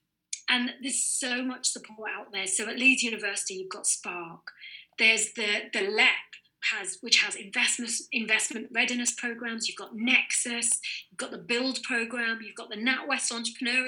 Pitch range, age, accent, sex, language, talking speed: 205-245 Hz, 30-49, British, female, English, 155 wpm